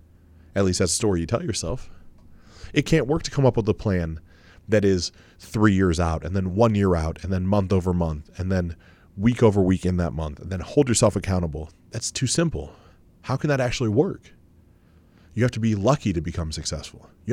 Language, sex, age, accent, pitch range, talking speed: English, male, 30-49, American, 85-120 Hz, 215 wpm